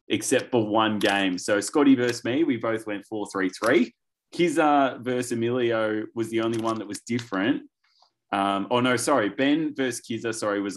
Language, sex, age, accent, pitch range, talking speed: English, male, 20-39, Australian, 100-155 Hz, 175 wpm